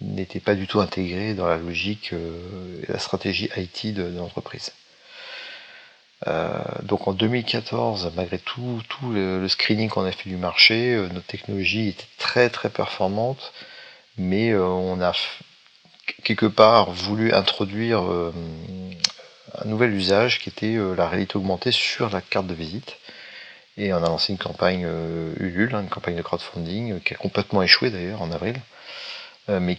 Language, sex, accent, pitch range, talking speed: French, male, French, 90-105 Hz, 145 wpm